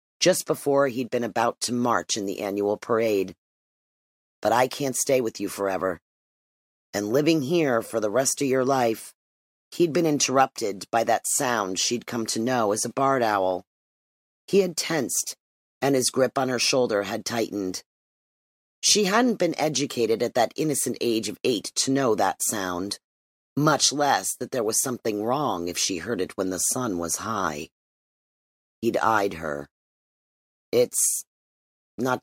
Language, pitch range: English, 100-135 Hz